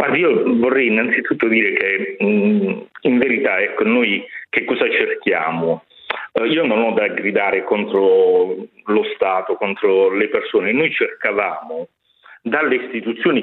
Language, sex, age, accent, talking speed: Italian, male, 40-59, native, 120 wpm